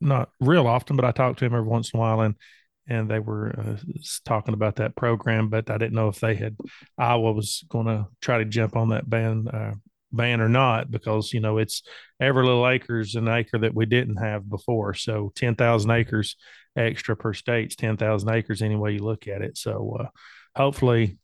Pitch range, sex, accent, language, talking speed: 110-135 Hz, male, American, English, 210 wpm